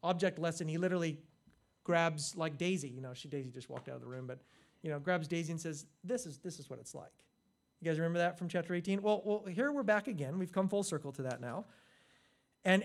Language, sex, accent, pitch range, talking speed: English, male, American, 150-195 Hz, 245 wpm